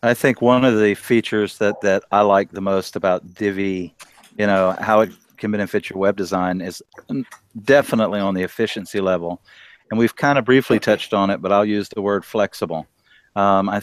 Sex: male